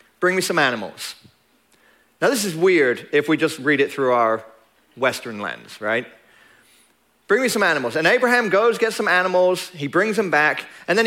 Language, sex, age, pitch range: English, male, 40-59, 155-200 Hz